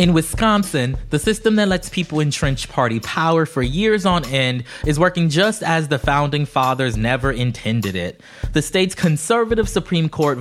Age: 20-39